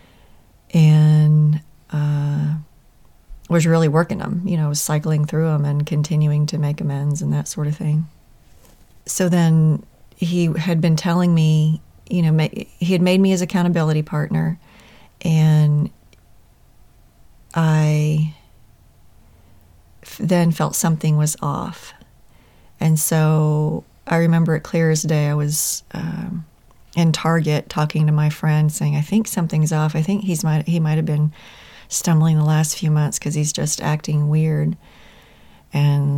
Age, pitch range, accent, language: 30-49, 150-170 Hz, American, English